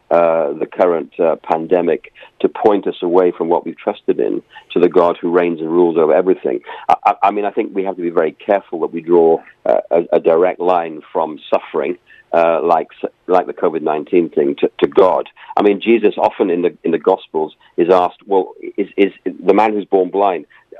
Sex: male